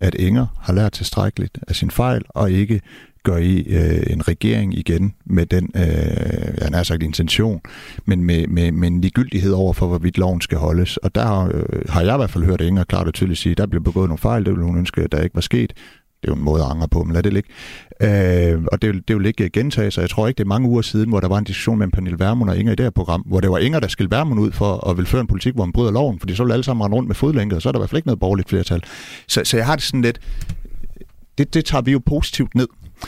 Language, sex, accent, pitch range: Danish, male, native, 85-110 Hz